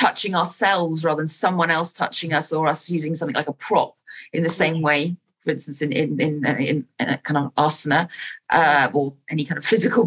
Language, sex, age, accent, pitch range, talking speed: English, female, 40-59, British, 145-175 Hz, 210 wpm